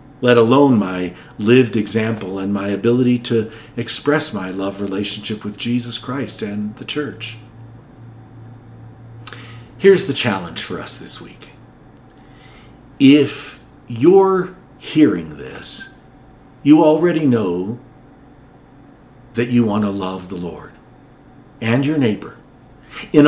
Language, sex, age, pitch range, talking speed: English, male, 50-69, 105-140 Hz, 115 wpm